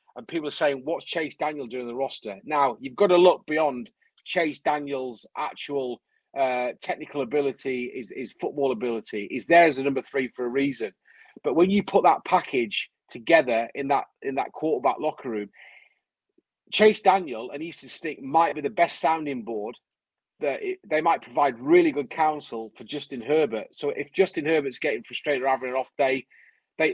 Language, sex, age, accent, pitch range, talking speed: English, male, 30-49, British, 135-185 Hz, 180 wpm